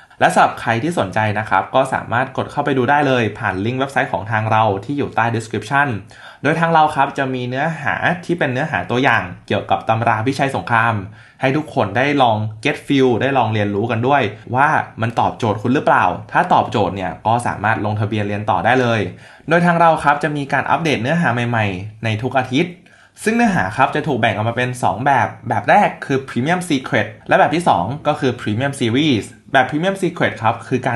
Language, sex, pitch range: Thai, male, 110-135 Hz